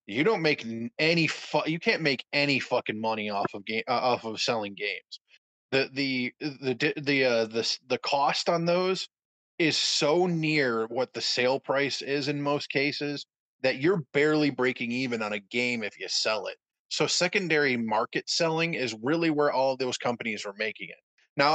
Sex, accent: male, American